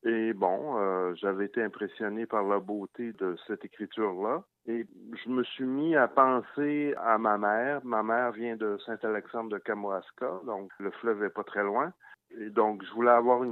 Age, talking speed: 60-79, 185 wpm